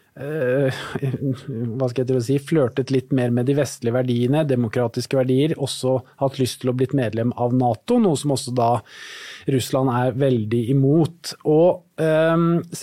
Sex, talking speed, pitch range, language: male, 145 wpm, 125-145 Hz, English